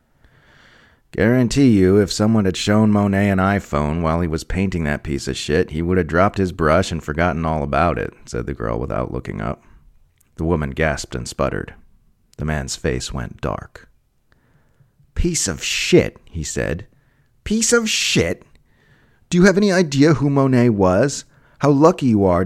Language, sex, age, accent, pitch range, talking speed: English, male, 40-59, American, 90-140 Hz, 170 wpm